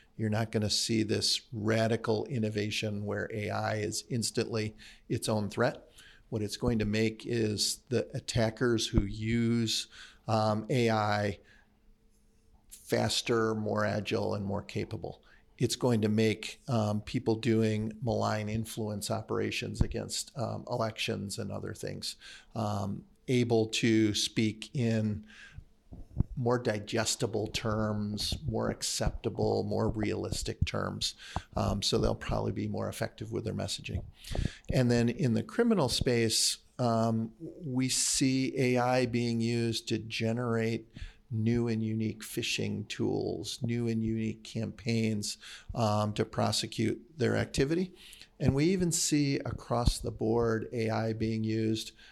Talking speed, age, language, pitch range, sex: 125 wpm, 50-69, English, 110-115 Hz, male